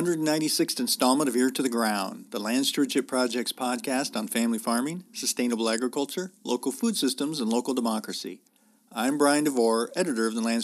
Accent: American